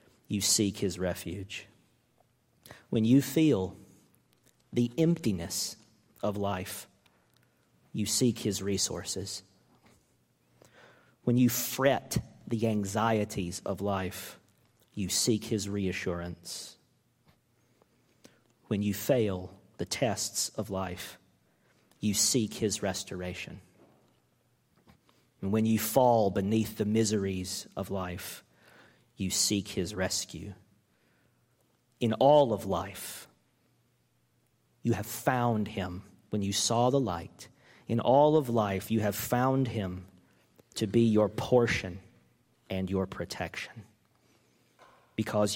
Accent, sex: American, male